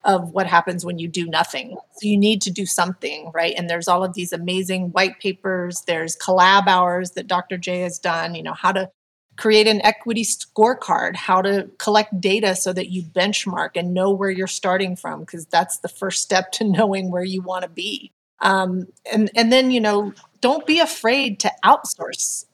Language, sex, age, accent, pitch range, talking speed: English, female, 30-49, American, 180-215 Hz, 200 wpm